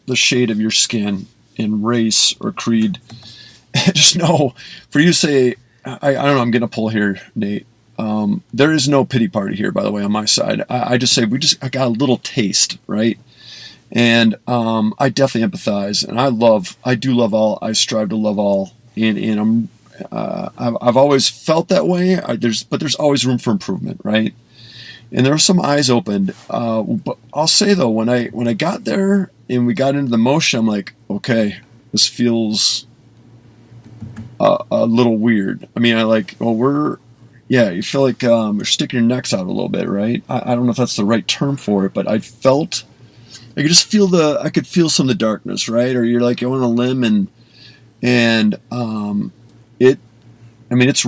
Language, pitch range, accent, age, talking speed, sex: English, 115-135 Hz, American, 40-59, 210 wpm, male